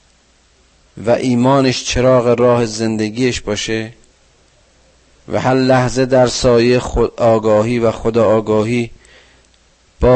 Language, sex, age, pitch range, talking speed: Persian, male, 40-59, 100-125 Hz, 100 wpm